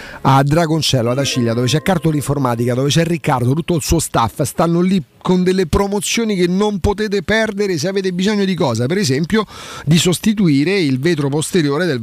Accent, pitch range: native, 125-180 Hz